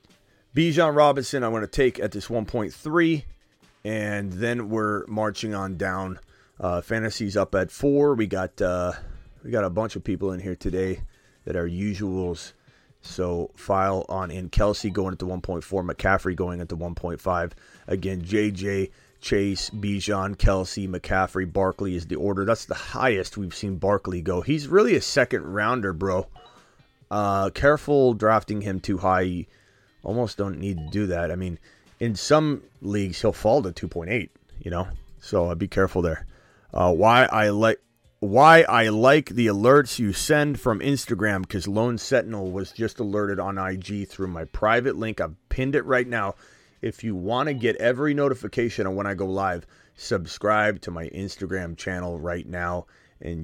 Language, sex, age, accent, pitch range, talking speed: English, male, 30-49, American, 90-110 Hz, 165 wpm